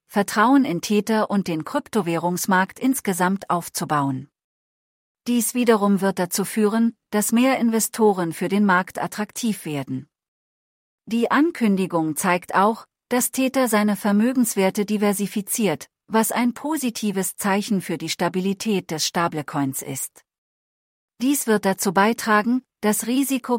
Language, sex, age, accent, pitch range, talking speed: English, female, 40-59, German, 180-225 Hz, 115 wpm